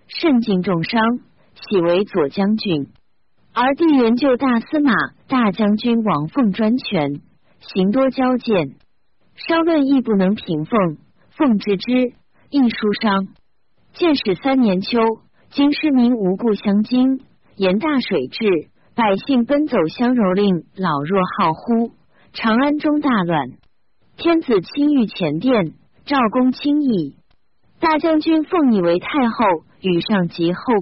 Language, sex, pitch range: Chinese, female, 185-265 Hz